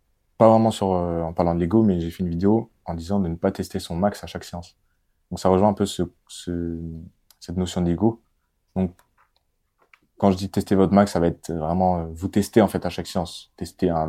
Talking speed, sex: 235 wpm, male